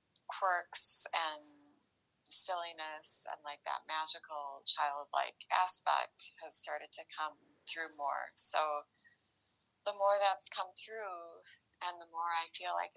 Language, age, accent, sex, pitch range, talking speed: English, 20-39, American, female, 145-170 Hz, 125 wpm